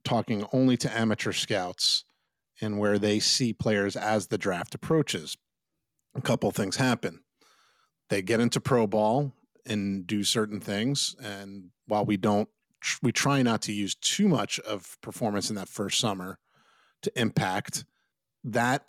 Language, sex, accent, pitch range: English, male, American, 100-125 Hz